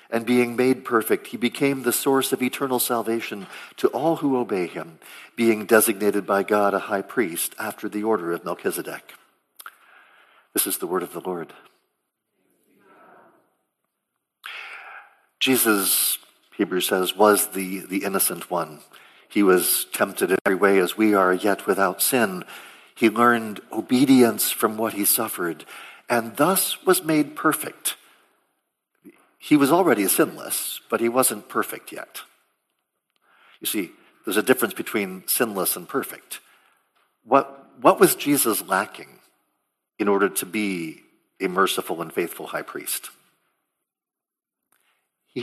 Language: English